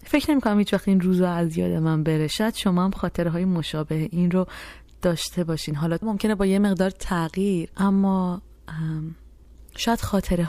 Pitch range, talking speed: 155-190 Hz, 155 wpm